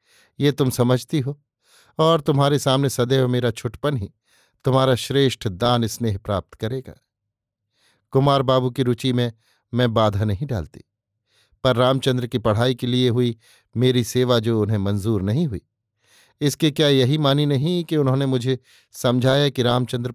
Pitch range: 110-140 Hz